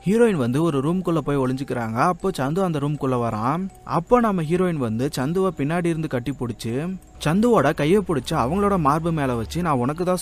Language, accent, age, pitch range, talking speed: Tamil, native, 30-49, 125-180 Hz, 180 wpm